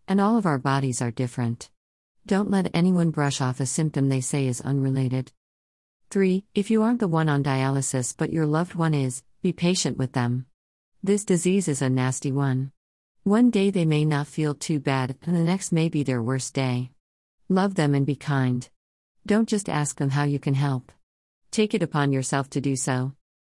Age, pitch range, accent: 40-59, 130-165 Hz, American